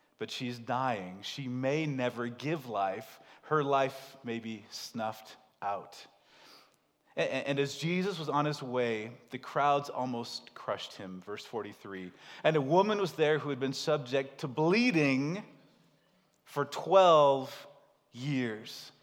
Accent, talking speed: American, 130 wpm